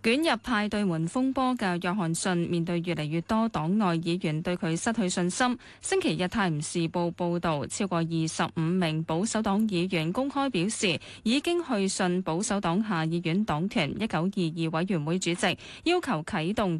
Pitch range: 175-235 Hz